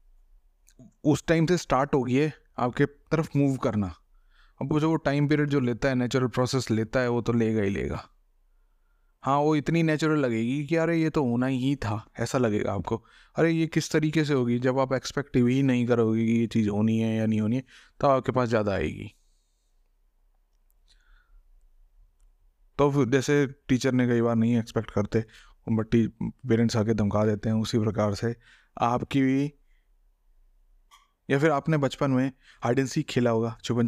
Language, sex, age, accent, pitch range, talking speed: Hindi, male, 20-39, native, 110-135 Hz, 175 wpm